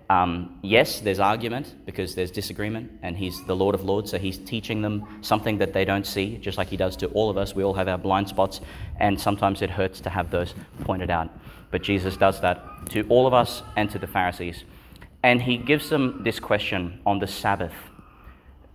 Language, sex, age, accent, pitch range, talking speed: English, male, 20-39, Australian, 90-105 Hz, 210 wpm